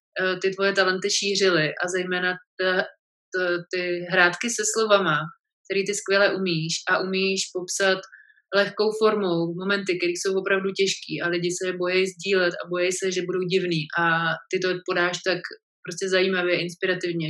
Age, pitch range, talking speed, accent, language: 20-39, 175-195 Hz, 155 wpm, native, Czech